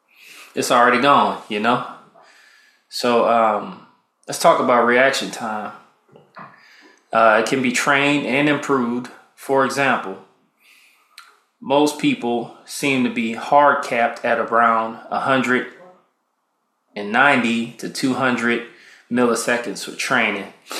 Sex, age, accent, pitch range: male, 20-39, American, 115-135 Hz